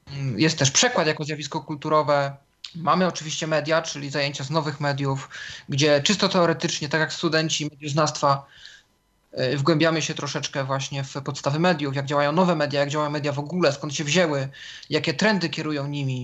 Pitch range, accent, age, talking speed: 150-195 Hz, native, 20-39, 165 wpm